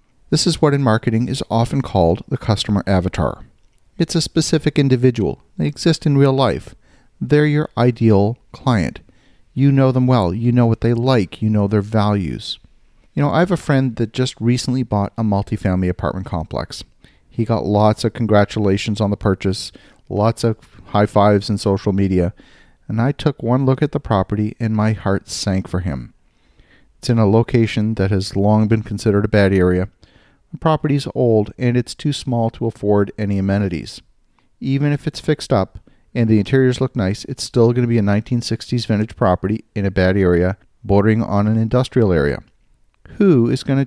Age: 40-59